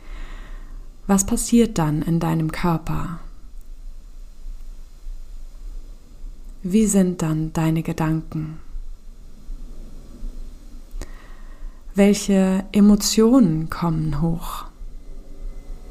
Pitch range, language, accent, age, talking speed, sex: 165-210 Hz, German, German, 20-39, 55 wpm, female